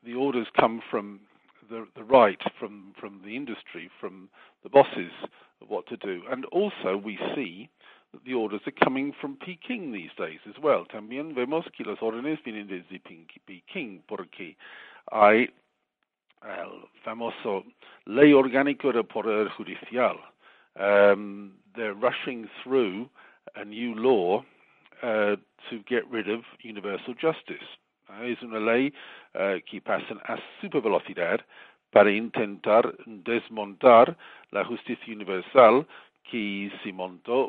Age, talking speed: 50-69, 130 wpm